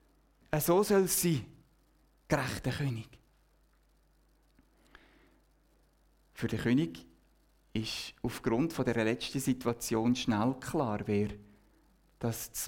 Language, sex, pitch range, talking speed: German, male, 115-150 Hz, 90 wpm